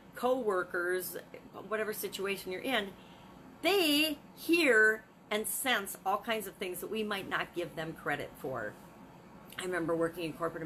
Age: 40-59